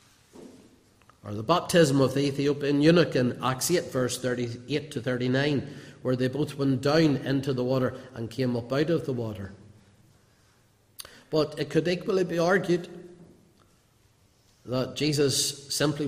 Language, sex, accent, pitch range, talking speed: English, male, Irish, 115-145 Hz, 140 wpm